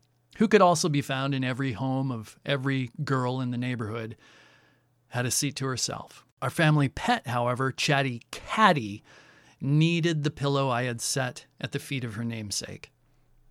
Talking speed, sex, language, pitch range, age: 165 wpm, male, English, 125-155 Hz, 40-59